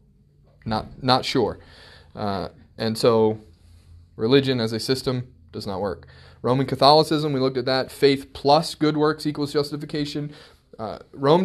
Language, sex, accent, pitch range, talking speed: English, male, American, 110-140 Hz, 140 wpm